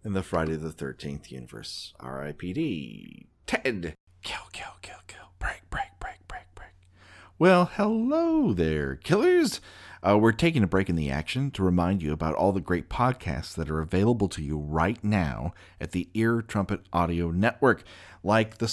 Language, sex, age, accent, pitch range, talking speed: English, male, 40-59, American, 85-110 Hz, 165 wpm